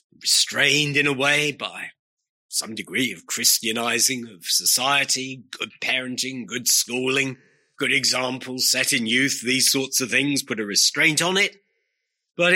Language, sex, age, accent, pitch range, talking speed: English, male, 30-49, British, 115-145 Hz, 145 wpm